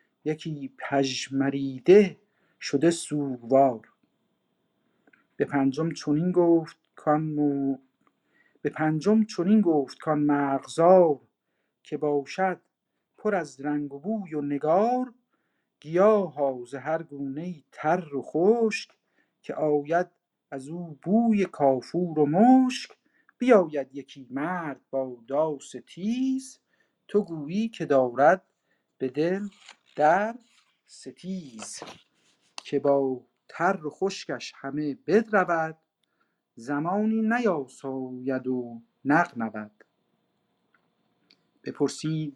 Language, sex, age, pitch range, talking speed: Persian, male, 50-69, 135-180 Hz, 90 wpm